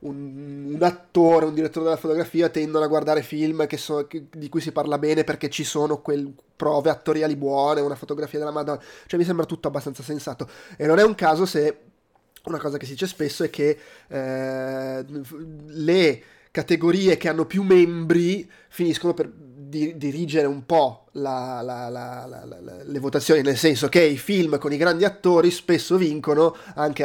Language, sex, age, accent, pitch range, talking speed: Italian, male, 20-39, native, 145-170 Hz, 175 wpm